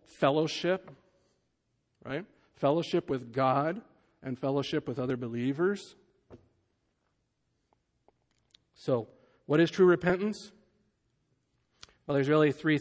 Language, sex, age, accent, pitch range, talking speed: English, male, 50-69, American, 135-155 Hz, 90 wpm